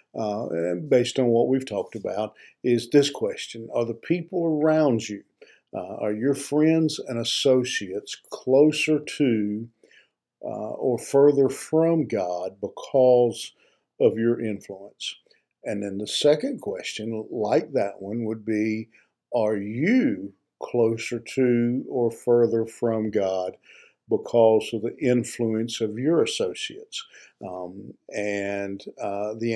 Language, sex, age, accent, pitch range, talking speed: English, male, 50-69, American, 105-135 Hz, 125 wpm